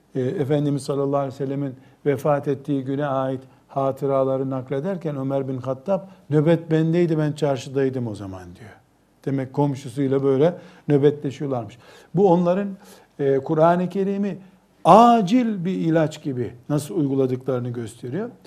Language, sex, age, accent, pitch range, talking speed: Turkish, male, 60-79, native, 130-165 Hz, 115 wpm